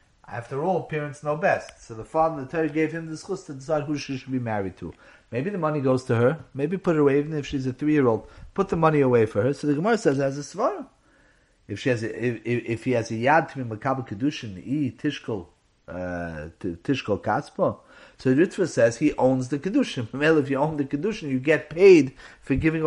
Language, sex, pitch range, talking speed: English, male, 130-175 Hz, 230 wpm